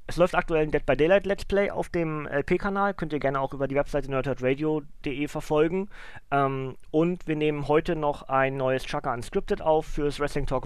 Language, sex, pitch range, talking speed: German, male, 130-160 Hz, 195 wpm